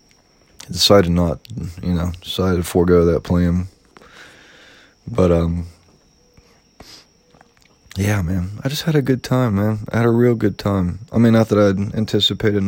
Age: 20-39